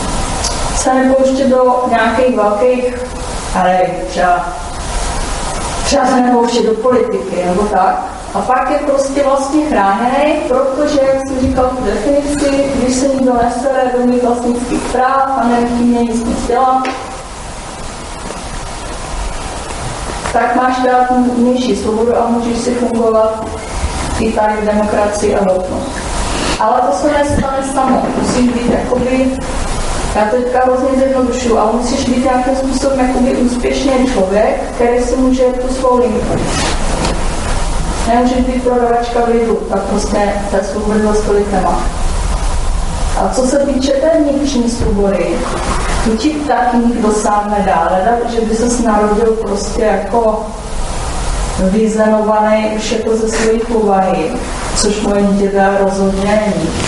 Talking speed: 130 wpm